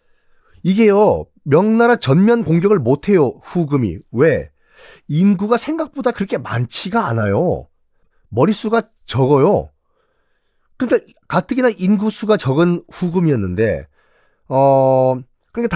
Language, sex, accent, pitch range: Korean, male, native, 135-230 Hz